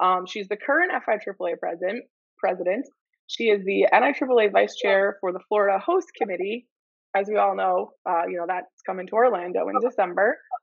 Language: English